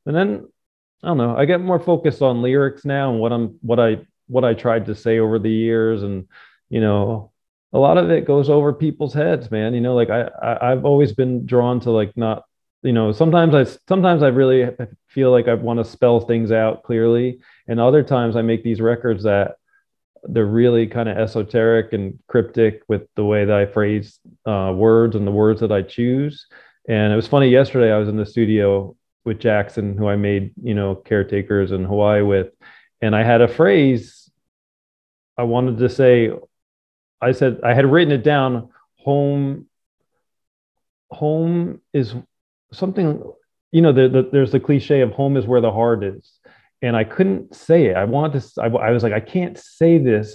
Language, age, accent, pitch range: English, 20-39, American, 110-140 Hz